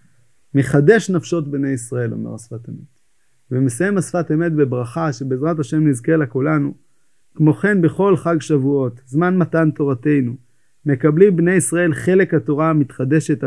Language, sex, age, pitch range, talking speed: Hebrew, male, 30-49, 130-165 Hz, 135 wpm